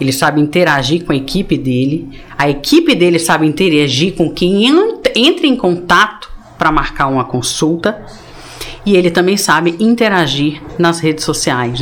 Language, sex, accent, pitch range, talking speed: Portuguese, female, Brazilian, 135-175 Hz, 145 wpm